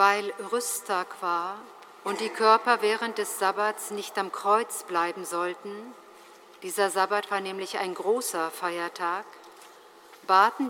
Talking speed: 125 wpm